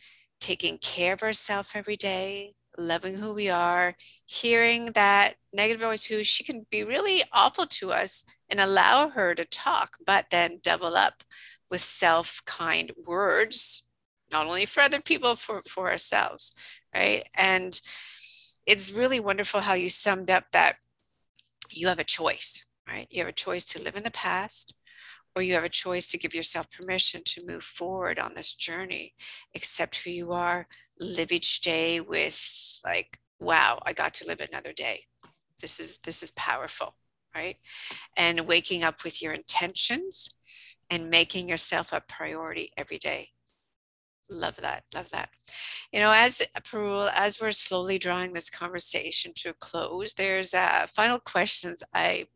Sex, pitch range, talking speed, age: female, 170-210 Hz, 160 wpm, 40-59